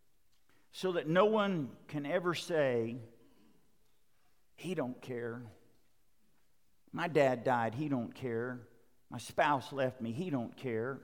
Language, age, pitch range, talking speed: English, 50-69, 125-155 Hz, 125 wpm